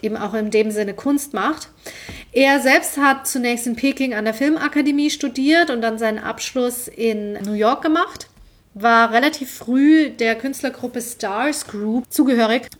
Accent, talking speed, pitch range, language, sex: German, 155 wpm, 220-270 Hz, German, female